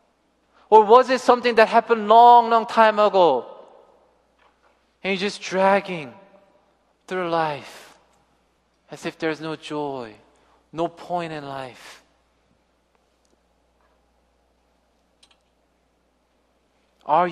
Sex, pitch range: male, 140-195 Hz